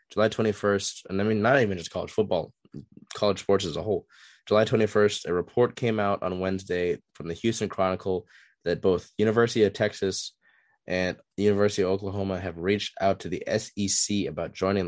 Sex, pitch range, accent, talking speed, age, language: male, 90-105 Hz, American, 180 wpm, 20-39, English